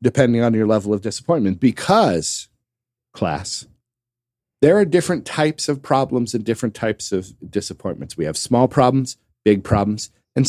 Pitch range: 95-125 Hz